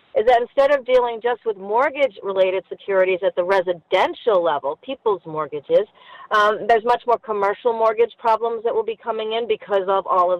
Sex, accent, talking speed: female, American, 180 wpm